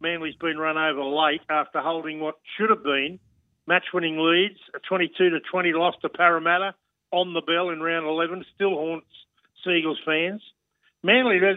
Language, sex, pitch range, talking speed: English, male, 155-195 Hz, 155 wpm